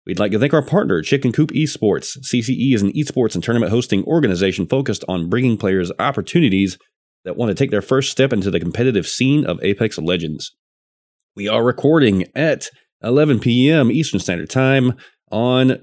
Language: English